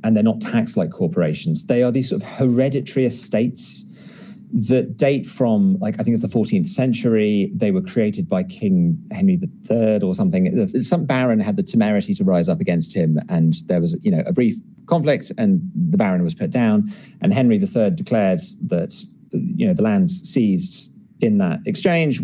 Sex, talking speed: male, 175 wpm